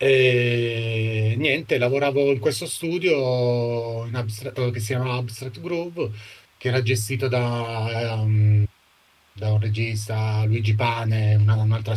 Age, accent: 30-49, native